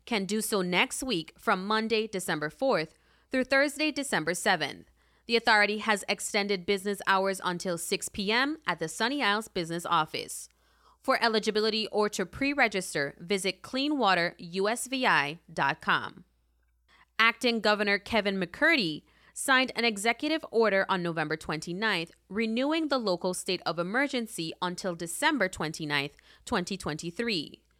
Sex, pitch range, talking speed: female, 175-230 Hz, 120 wpm